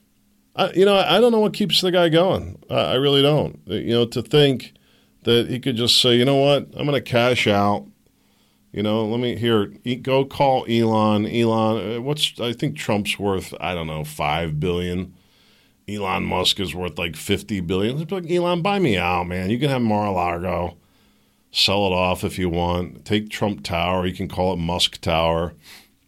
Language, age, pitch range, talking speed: English, 40-59, 90-130 Hz, 190 wpm